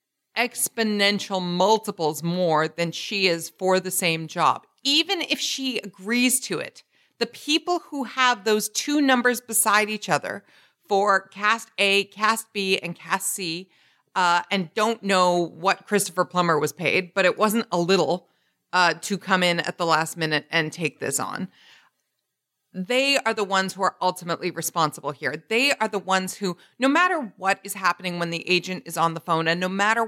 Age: 40-59